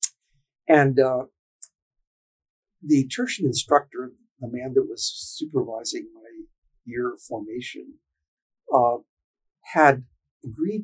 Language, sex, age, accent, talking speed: English, male, 50-69, American, 95 wpm